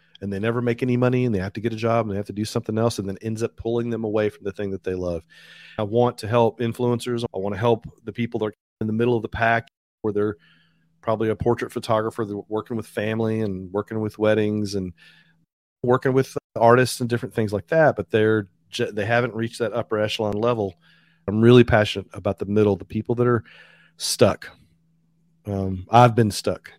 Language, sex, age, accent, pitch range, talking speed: English, male, 40-59, American, 105-120 Hz, 220 wpm